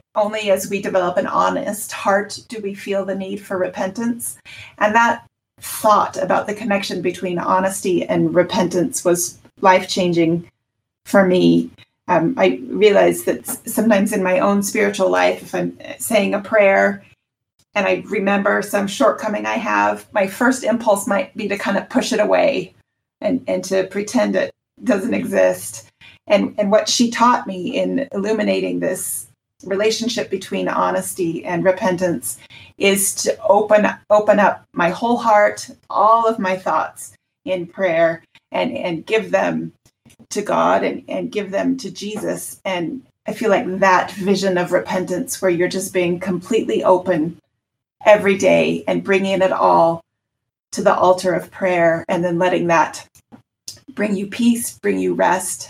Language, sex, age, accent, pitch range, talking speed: English, female, 30-49, American, 165-210 Hz, 155 wpm